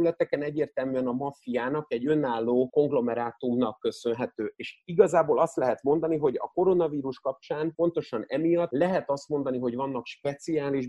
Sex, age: male, 30-49